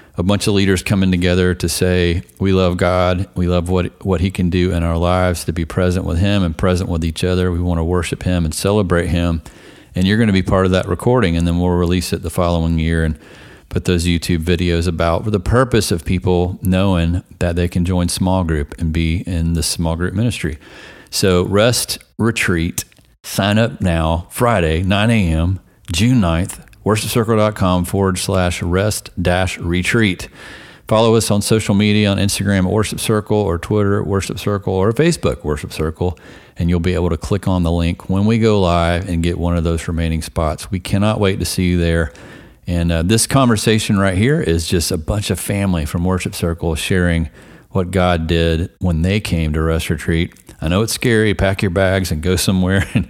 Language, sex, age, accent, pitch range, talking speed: English, male, 40-59, American, 85-100 Hz, 200 wpm